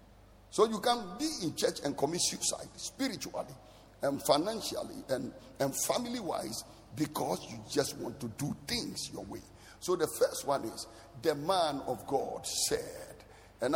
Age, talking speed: 60-79, 155 wpm